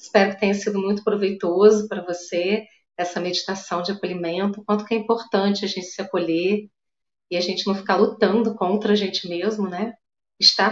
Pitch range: 195-225 Hz